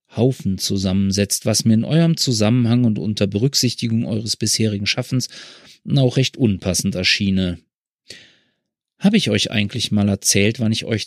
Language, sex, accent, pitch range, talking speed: German, male, German, 100-125 Hz, 140 wpm